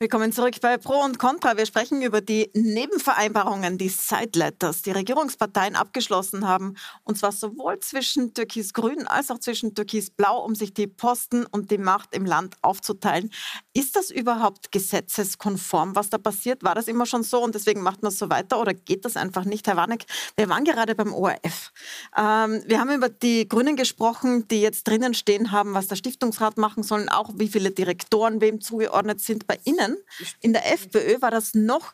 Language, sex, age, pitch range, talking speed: German, female, 40-59, 200-240 Hz, 190 wpm